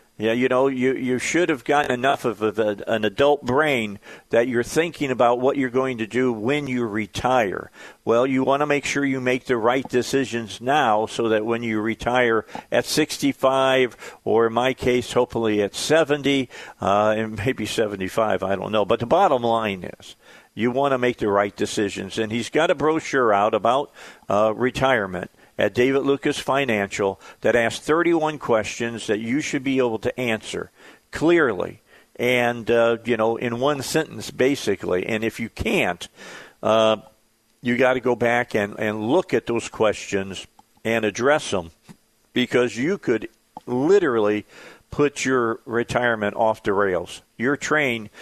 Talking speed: 170 wpm